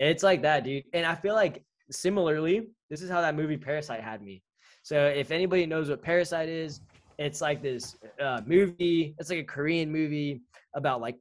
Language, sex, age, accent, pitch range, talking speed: English, male, 10-29, American, 125-155 Hz, 195 wpm